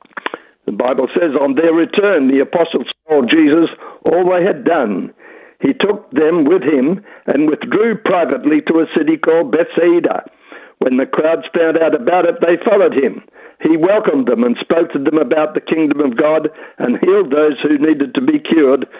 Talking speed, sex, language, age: 180 wpm, male, English, 60-79